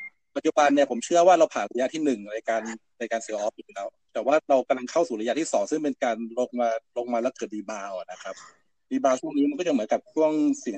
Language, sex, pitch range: Thai, male, 115-170 Hz